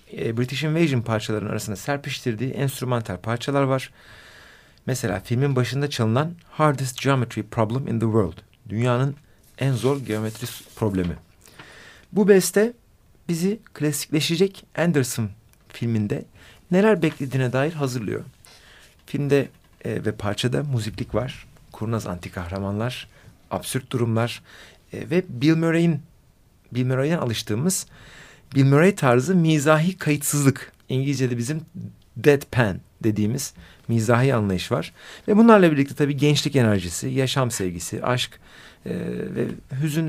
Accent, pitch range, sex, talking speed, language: native, 115-155 Hz, male, 110 wpm, Turkish